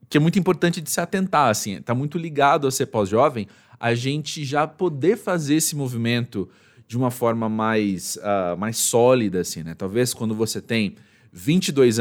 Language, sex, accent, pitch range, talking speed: Portuguese, male, Brazilian, 110-155 Hz, 175 wpm